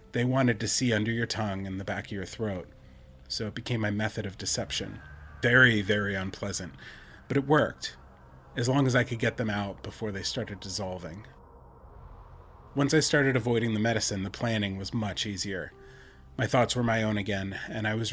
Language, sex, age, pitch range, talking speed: English, male, 30-49, 95-115 Hz, 190 wpm